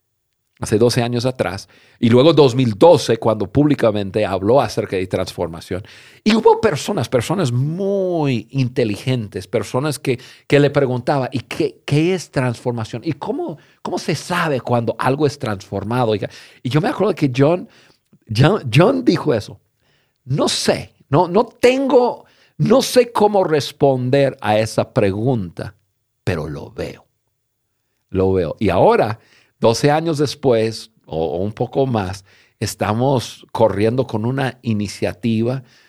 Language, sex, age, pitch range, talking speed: Spanish, male, 50-69, 100-135 Hz, 135 wpm